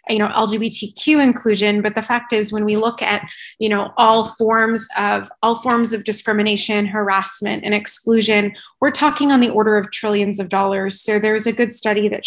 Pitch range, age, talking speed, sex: 200-230 Hz, 20-39, 190 wpm, female